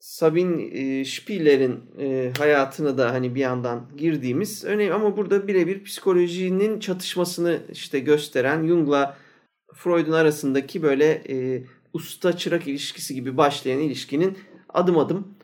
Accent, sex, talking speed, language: native, male, 120 wpm, Turkish